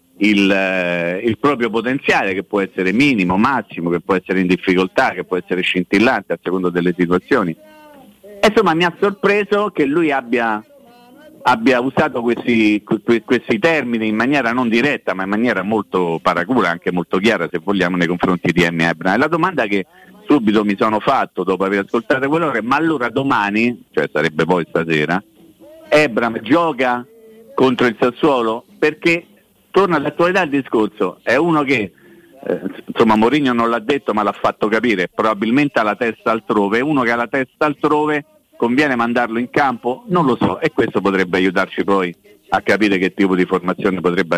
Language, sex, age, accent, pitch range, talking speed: Italian, male, 50-69, native, 95-150 Hz, 175 wpm